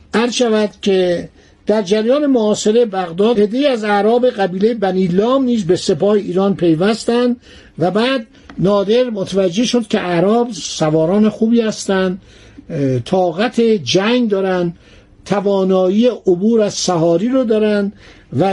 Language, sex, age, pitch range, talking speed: Persian, male, 60-79, 175-225 Hz, 120 wpm